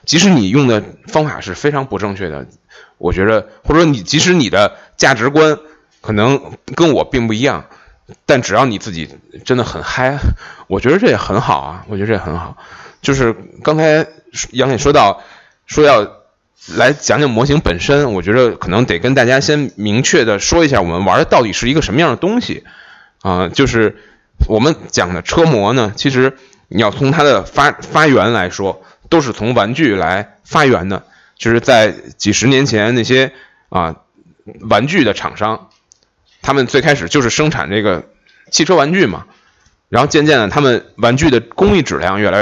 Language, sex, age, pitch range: Chinese, male, 20-39, 105-145 Hz